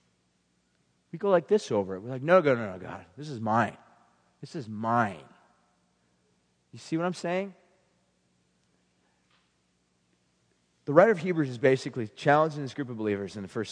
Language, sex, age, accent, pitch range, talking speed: English, male, 40-59, American, 115-170 Hz, 165 wpm